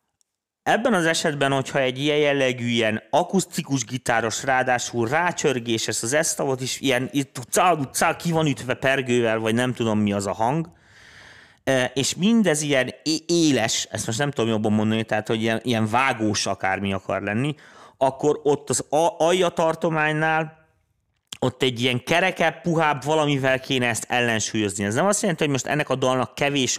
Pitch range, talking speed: 120-155 Hz, 150 wpm